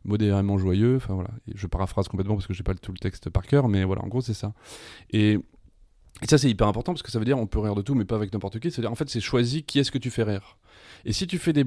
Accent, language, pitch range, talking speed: French, French, 100-130 Hz, 310 wpm